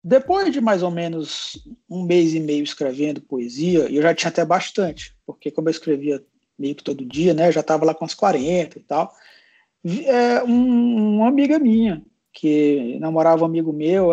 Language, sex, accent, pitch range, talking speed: Portuguese, male, Brazilian, 165-235 Hz, 190 wpm